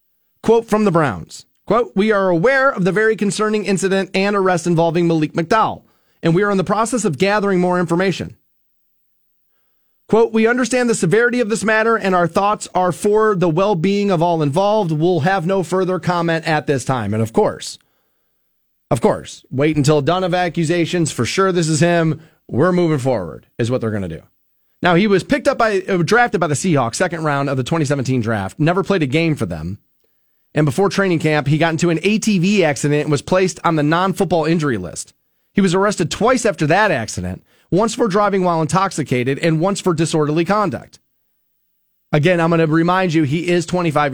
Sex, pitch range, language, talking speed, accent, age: male, 150-205 Hz, English, 195 wpm, American, 30-49